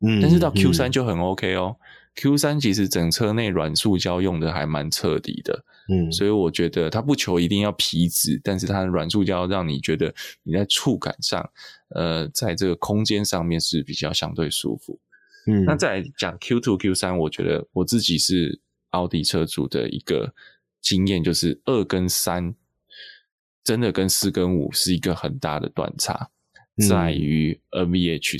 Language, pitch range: Chinese, 80-100 Hz